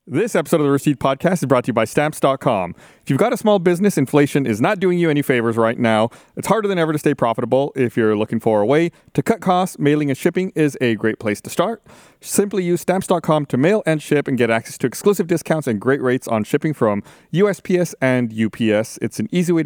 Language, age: English, 30-49